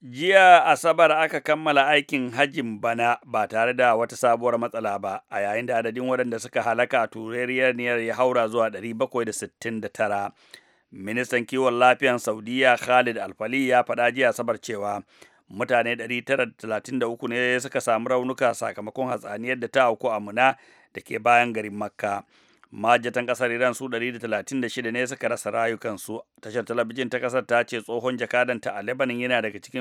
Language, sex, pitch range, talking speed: English, male, 115-130 Hz, 150 wpm